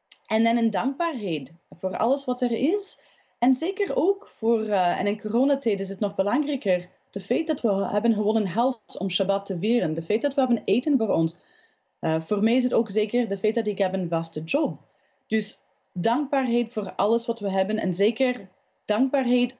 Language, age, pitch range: Dutch, 30-49, 195-260 Hz